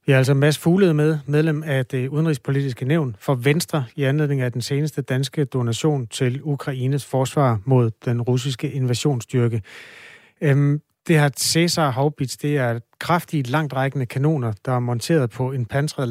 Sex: male